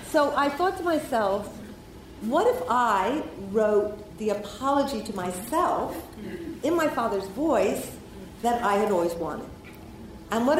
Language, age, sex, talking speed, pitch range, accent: English, 50-69, female, 135 wpm, 180-235 Hz, American